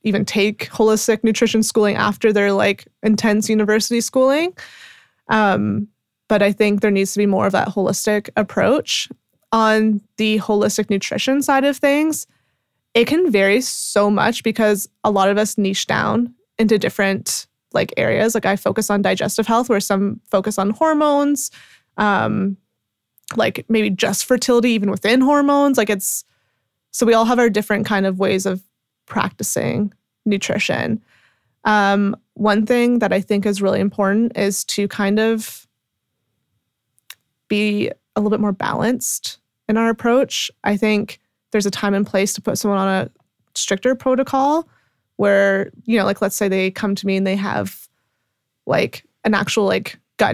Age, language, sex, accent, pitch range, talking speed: 20-39, English, female, American, 200-230 Hz, 160 wpm